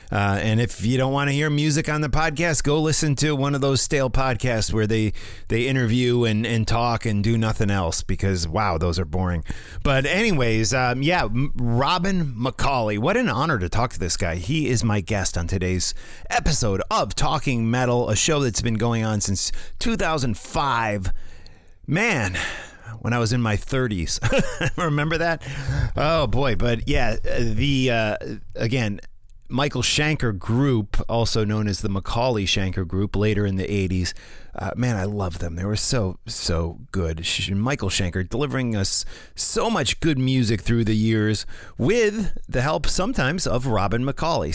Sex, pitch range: male, 95-130 Hz